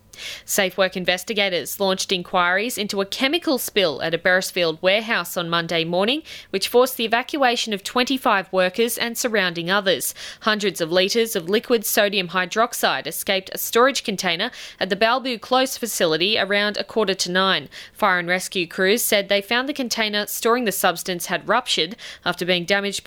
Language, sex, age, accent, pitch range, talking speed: English, female, 20-39, Australian, 185-225 Hz, 165 wpm